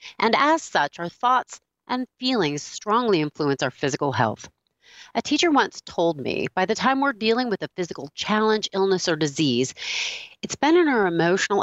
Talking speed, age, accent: 175 wpm, 40-59, American